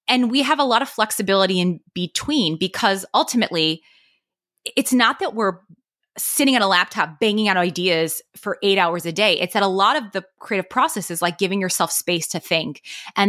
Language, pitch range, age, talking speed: English, 170-220 Hz, 20-39, 195 wpm